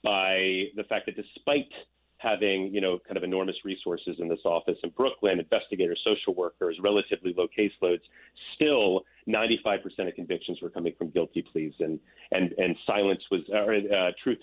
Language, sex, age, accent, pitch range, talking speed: English, male, 30-49, American, 90-120 Hz, 170 wpm